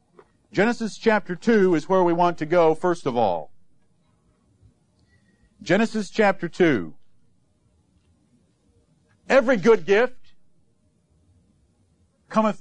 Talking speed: 90 wpm